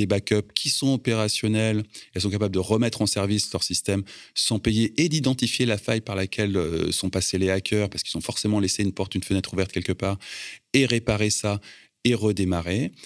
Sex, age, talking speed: male, 30-49, 200 wpm